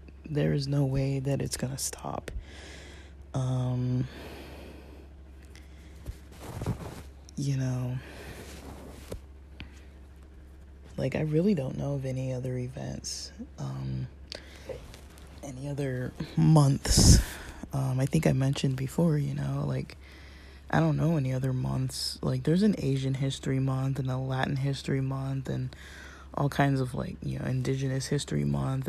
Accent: American